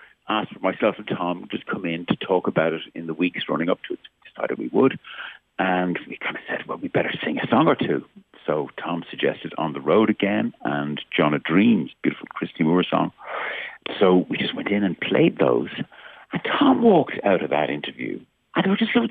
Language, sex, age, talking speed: English, male, 60-79, 220 wpm